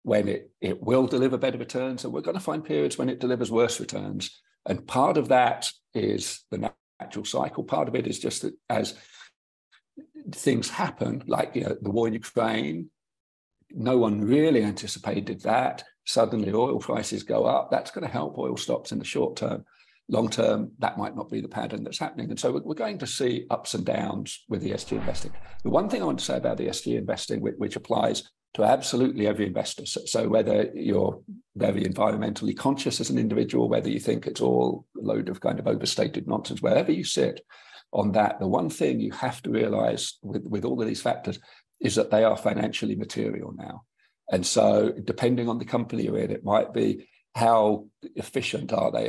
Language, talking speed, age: English, 205 wpm, 50-69